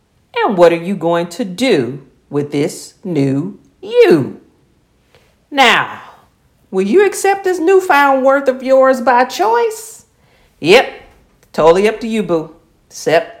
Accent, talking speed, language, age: American, 130 wpm, English, 50-69